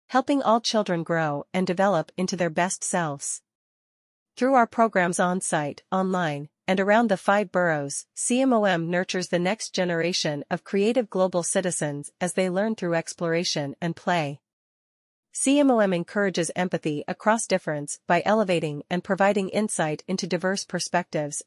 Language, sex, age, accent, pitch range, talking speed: English, female, 40-59, American, 165-200 Hz, 135 wpm